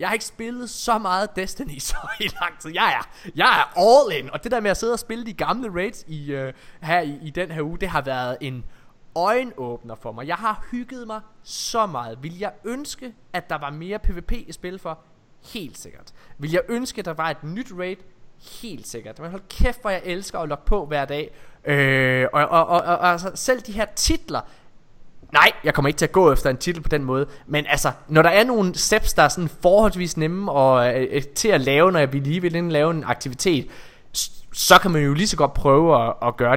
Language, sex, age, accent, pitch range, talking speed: Danish, male, 20-39, native, 140-195 Hz, 235 wpm